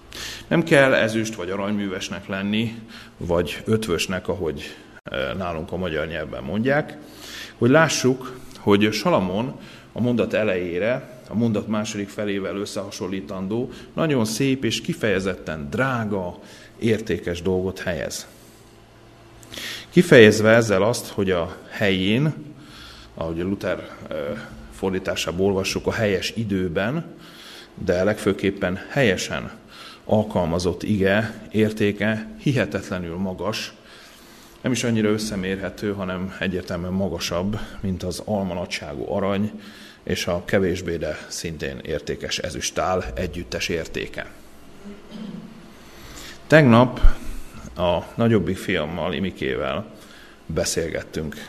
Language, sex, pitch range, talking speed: Hungarian, male, 95-115 Hz, 95 wpm